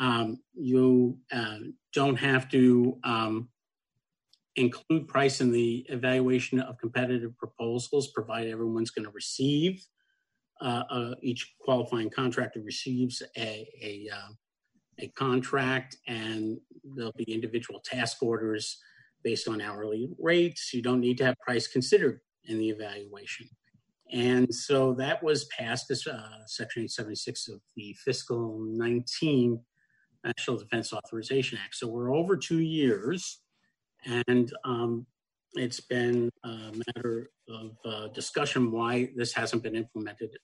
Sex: male